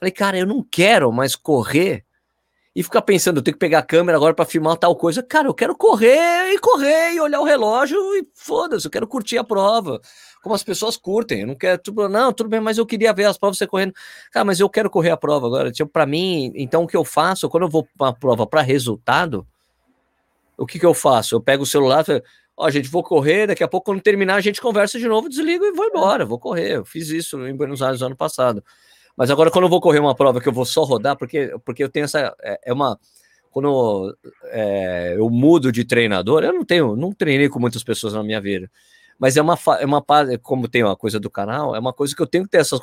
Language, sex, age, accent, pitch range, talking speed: Portuguese, male, 20-39, Brazilian, 135-215 Hz, 255 wpm